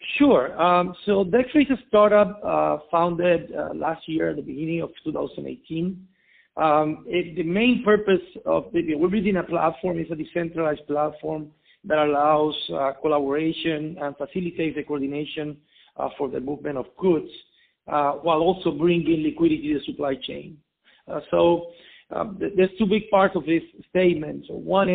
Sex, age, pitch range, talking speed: male, 50-69, 160-195 Hz, 165 wpm